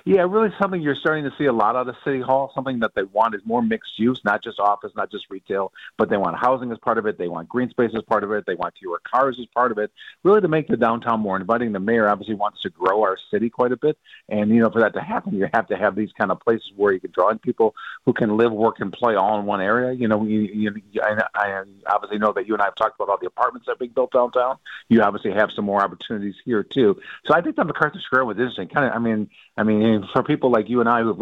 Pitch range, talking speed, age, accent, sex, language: 105-130 Hz, 295 wpm, 50-69, American, male, English